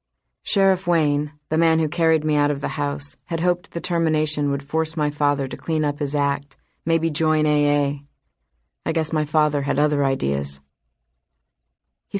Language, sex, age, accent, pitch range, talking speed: English, female, 30-49, American, 140-165 Hz, 170 wpm